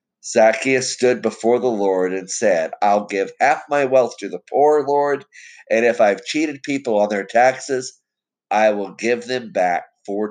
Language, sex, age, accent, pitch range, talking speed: English, male, 50-69, American, 110-150 Hz, 175 wpm